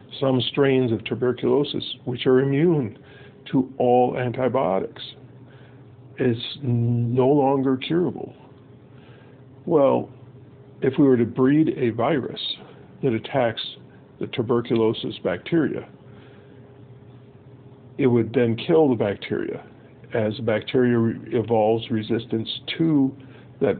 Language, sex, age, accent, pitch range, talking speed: English, male, 50-69, American, 120-135 Hz, 100 wpm